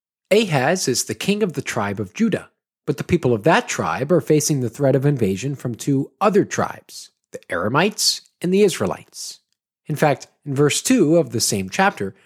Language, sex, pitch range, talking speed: English, male, 120-190 Hz, 190 wpm